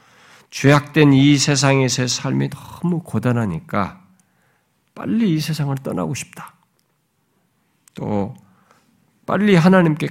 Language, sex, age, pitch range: Korean, male, 50-69, 145-215 Hz